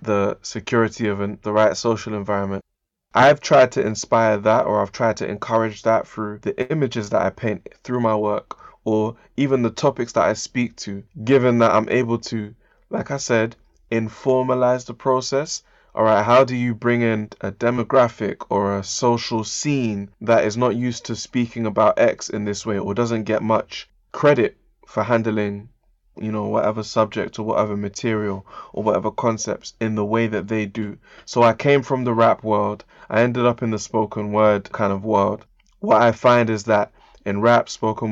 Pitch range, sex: 105-120 Hz, male